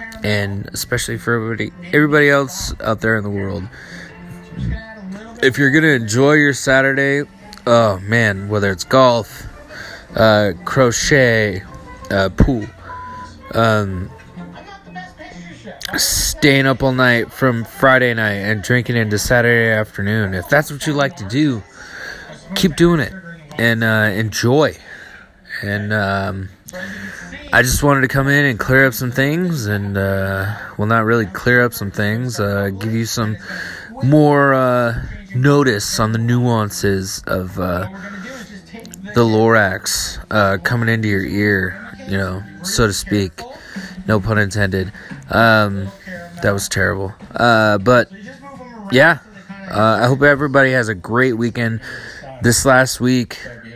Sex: male